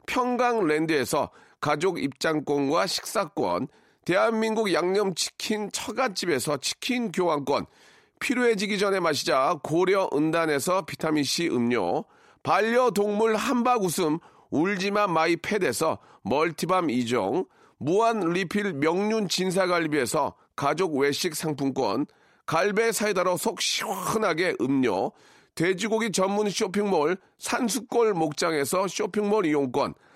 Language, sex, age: Korean, male, 40-59